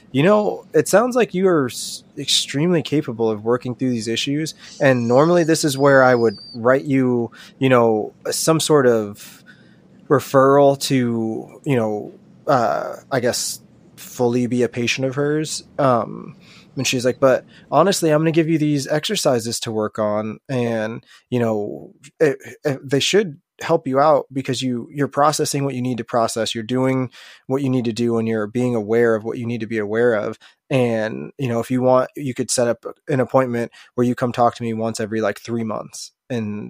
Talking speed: 190 wpm